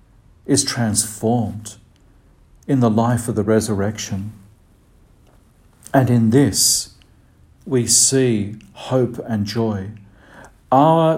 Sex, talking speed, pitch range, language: male, 90 wpm, 100-125 Hz, English